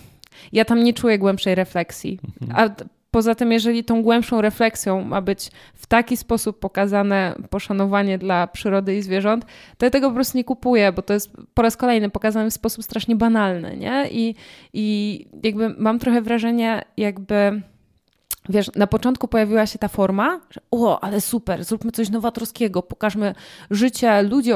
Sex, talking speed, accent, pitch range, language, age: female, 160 wpm, native, 195-230 Hz, Polish, 20-39